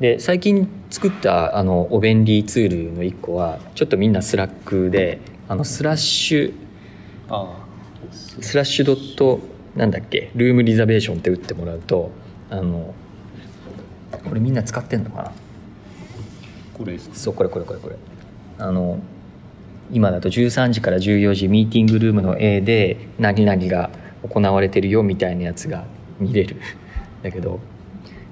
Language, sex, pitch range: English, male, 95-115 Hz